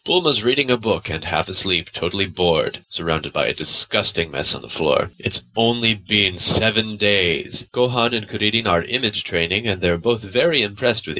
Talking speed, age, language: 180 wpm, 20-39, English